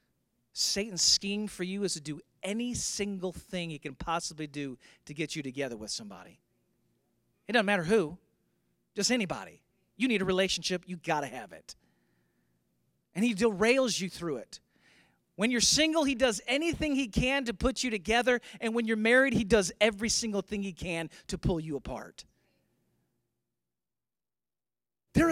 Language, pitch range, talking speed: English, 180-280 Hz, 160 wpm